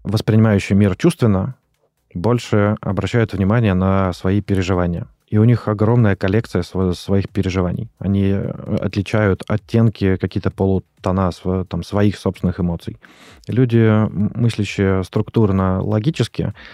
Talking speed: 95 wpm